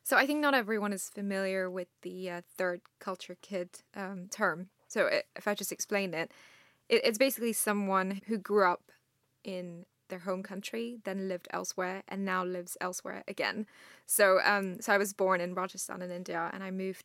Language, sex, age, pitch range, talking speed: English, female, 10-29, 185-210 Hz, 190 wpm